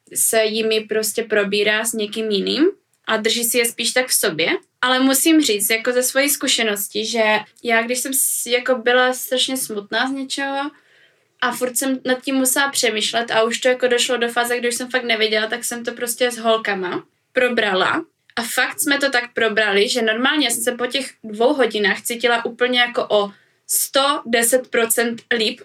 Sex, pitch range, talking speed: female, 225-260 Hz, 180 wpm